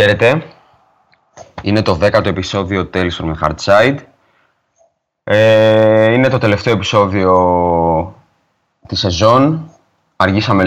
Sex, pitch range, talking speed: male, 90-110 Hz, 95 wpm